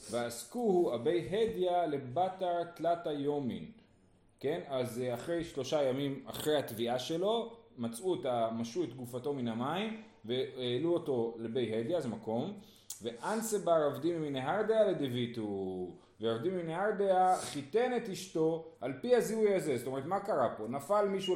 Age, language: 30-49, Hebrew